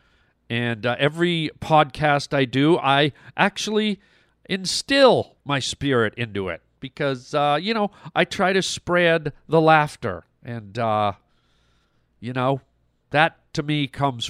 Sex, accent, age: male, American, 40-59